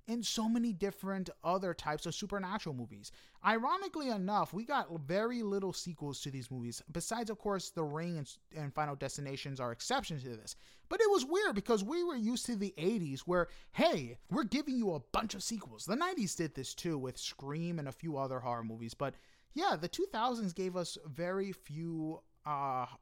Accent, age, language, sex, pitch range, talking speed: American, 30-49, English, male, 140-220 Hz, 190 wpm